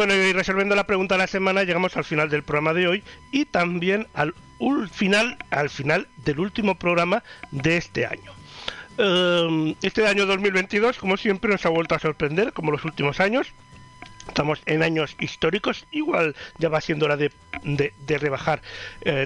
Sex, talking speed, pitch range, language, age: male, 180 wpm, 145-195 Hz, Spanish, 60-79